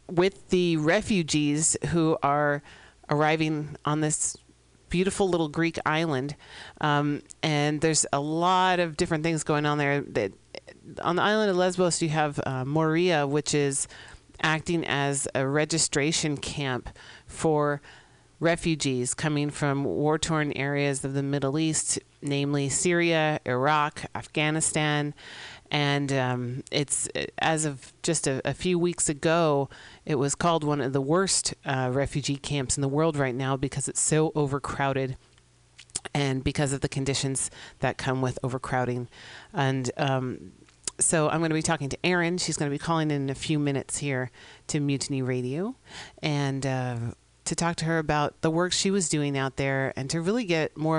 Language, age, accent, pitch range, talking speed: English, 40-59, American, 135-160 Hz, 155 wpm